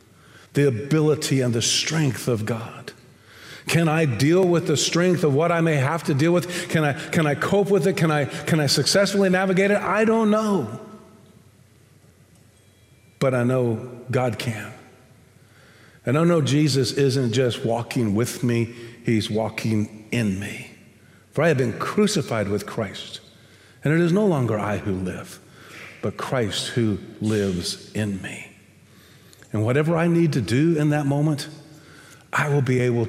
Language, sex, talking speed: English, male, 160 wpm